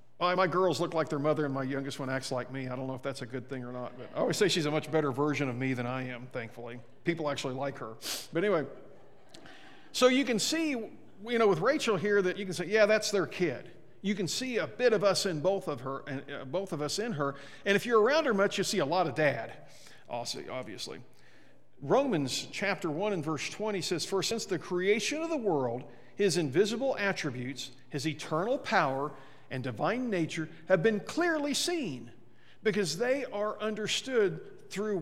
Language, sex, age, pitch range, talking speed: English, male, 50-69, 140-205 Hz, 215 wpm